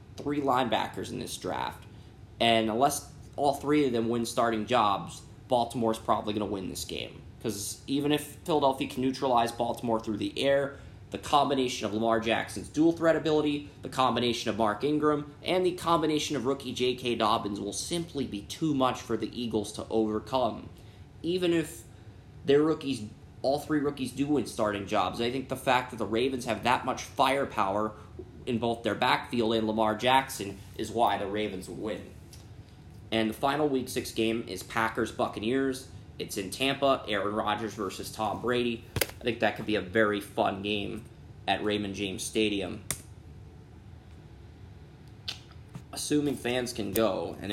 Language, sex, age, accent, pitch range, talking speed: English, male, 20-39, American, 105-135 Hz, 160 wpm